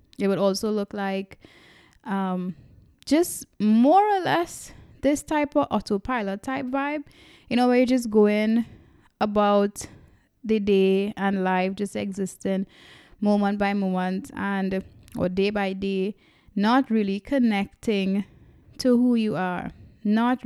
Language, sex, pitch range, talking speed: English, female, 195-235 Hz, 130 wpm